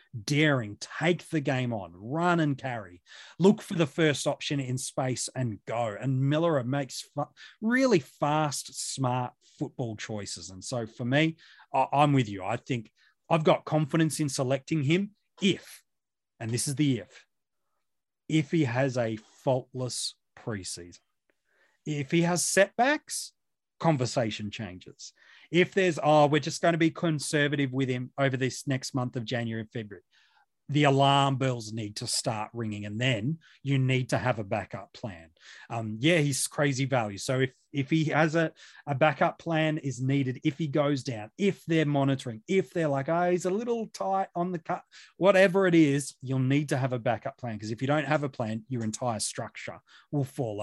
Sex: male